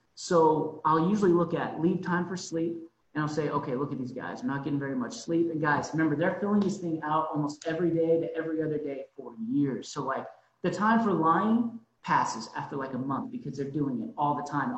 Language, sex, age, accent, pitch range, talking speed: English, male, 30-49, American, 150-190 Hz, 235 wpm